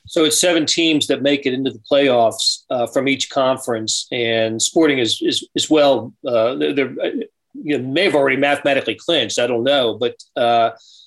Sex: male